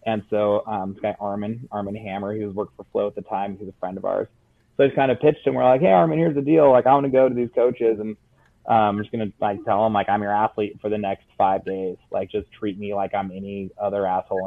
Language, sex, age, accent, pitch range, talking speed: English, male, 20-39, American, 100-120 Hz, 285 wpm